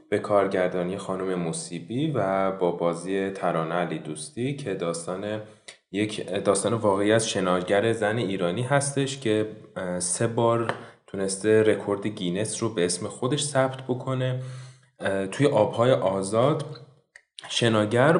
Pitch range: 95-135 Hz